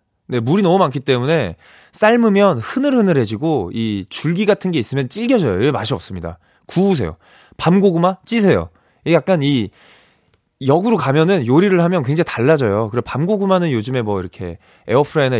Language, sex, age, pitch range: Korean, male, 20-39, 105-165 Hz